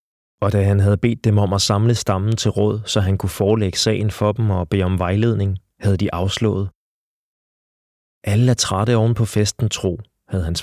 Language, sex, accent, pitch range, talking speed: Danish, male, native, 95-115 Hz, 200 wpm